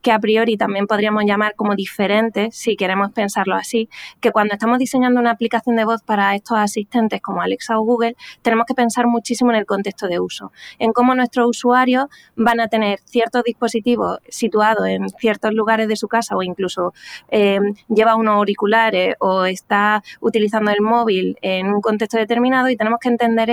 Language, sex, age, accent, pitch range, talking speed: Spanish, female, 20-39, Spanish, 210-240 Hz, 180 wpm